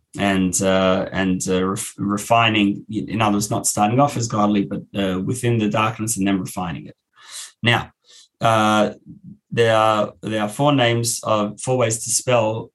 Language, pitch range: English, 105-125 Hz